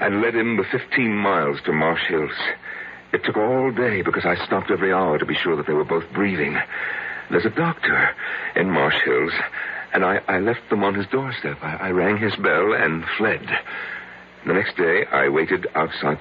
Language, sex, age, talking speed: English, male, 60-79, 195 wpm